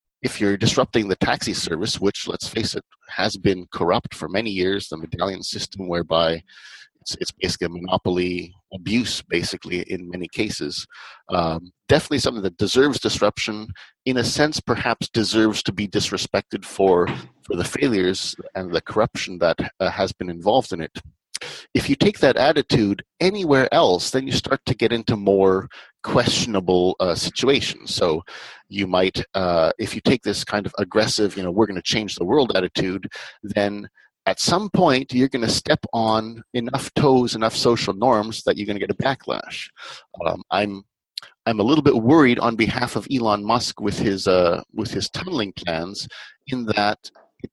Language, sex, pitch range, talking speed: English, male, 95-120 Hz, 175 wpm